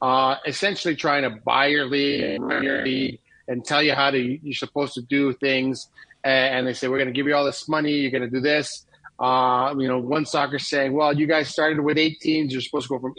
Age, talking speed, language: 30-49, 235 wpm, English